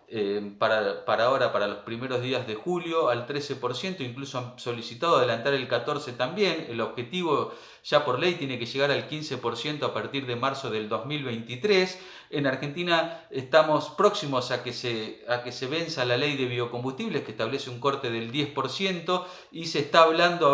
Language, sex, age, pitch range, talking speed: Spanish, male, 40-59, 125-170 Hz, 170 wpm